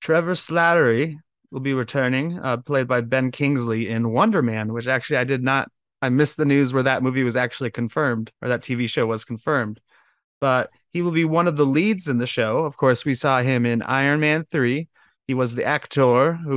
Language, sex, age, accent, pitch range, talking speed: English, male, 30-49, American, 115-140 Hz, 215 wpm